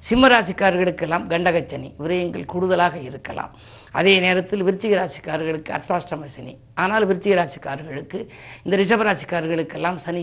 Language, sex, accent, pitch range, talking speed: Tamil, female, native, 155-195 Hz, 100 wpm